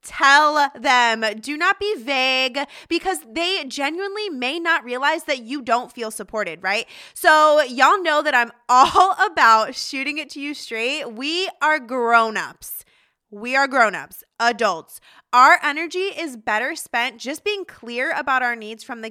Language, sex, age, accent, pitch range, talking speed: English, female, 20-39, American, 235-325 Hz, 155 wpm